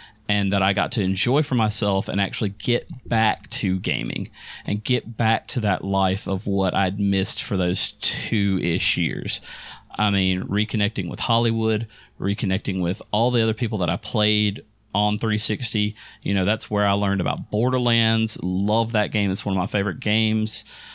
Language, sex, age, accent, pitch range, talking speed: English, male, 30-49, American, 95-115 Hz, 175 wpm